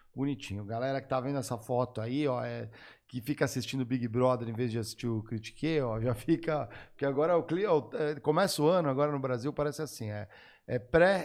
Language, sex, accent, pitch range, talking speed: Portuguese, male, Brazilian, 120-150 Hz, 220 wpm